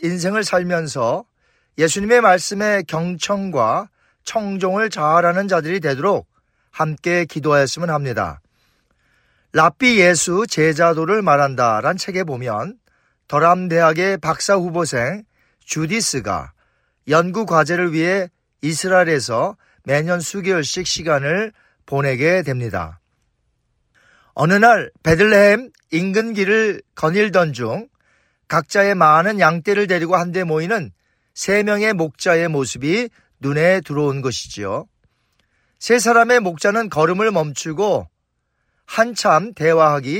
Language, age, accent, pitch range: Korean, 40-59, native, 150-200 Hz